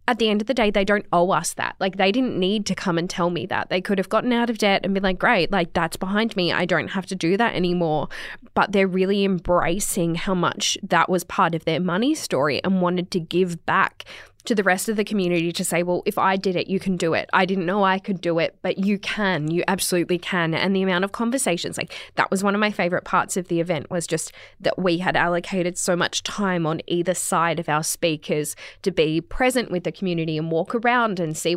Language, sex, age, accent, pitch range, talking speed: English, female, 10-29, Australian, 180-245 Hz, 255 wpm